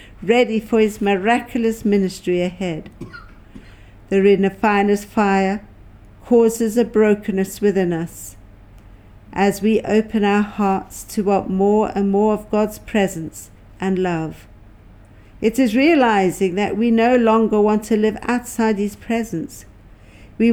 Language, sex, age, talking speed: English, female, 60-79, 125 wpm